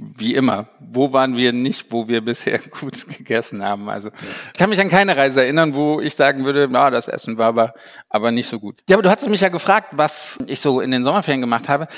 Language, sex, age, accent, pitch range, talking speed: German, male, 50-69, German, 130-160 Hz, 245 wpm